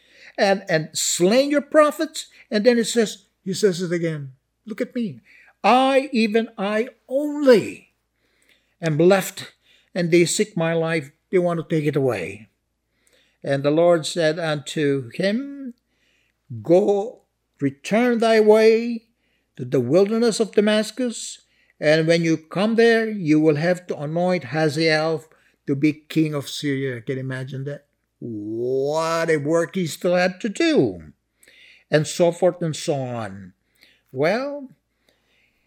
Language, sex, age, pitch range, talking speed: English, male, 60-79, 145-215 Hz, 140 wpm